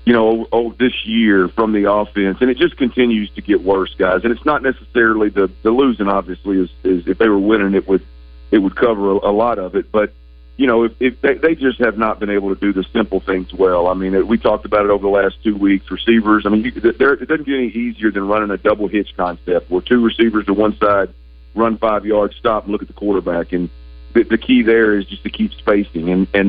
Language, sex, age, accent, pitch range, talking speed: English, male, 40-59, American, 95-115 Hz, 245 wpm